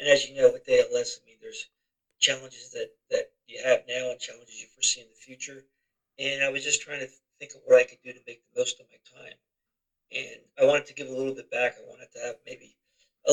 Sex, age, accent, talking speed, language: male, 50-69, American, 250 wpm, English